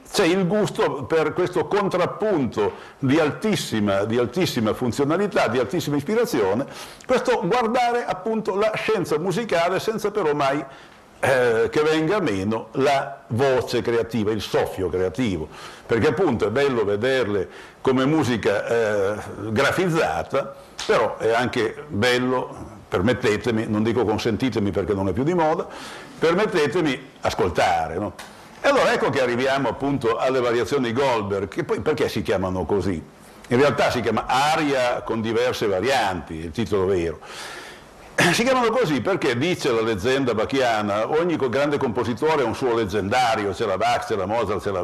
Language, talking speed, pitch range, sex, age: Italian, 145 wpm, 115-175 Hz, male, 60-79